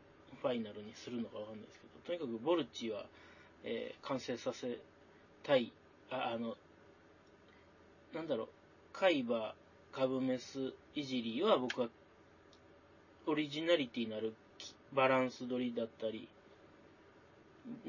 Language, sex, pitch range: Japanese, male, 115-175 Hz